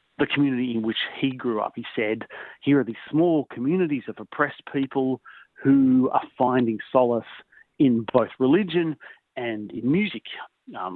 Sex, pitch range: male, 115-140 Hz